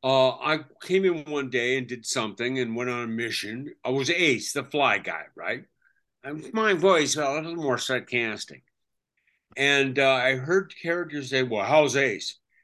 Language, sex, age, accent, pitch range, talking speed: English, male, 60-79, American, 130-190 Hz, 185 wpm